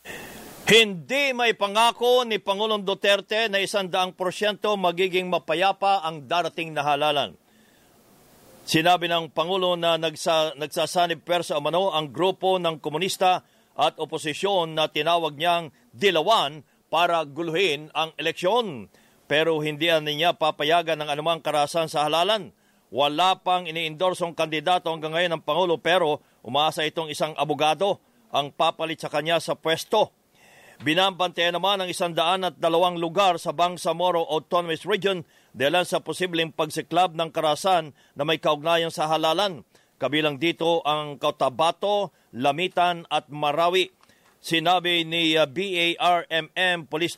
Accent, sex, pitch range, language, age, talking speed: Filipino, male, 155-180 Hz, English, 50-69, 125 wpm